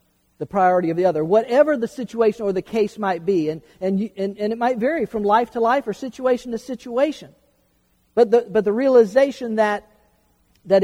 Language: English